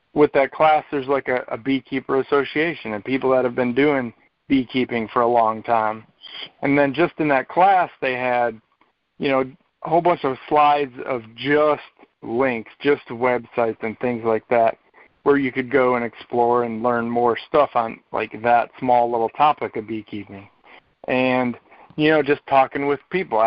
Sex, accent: male, American